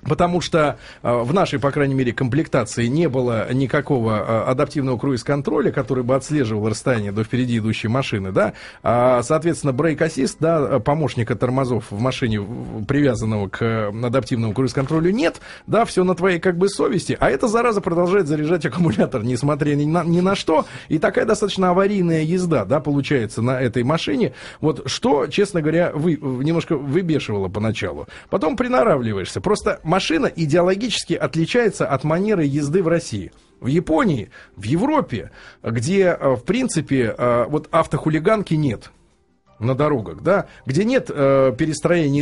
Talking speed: 140 wpm